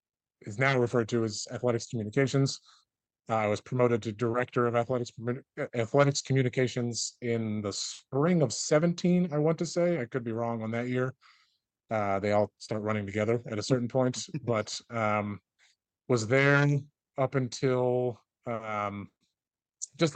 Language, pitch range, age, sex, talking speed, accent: English, 110-135 Hz, 30-49, male, 150 wpm, American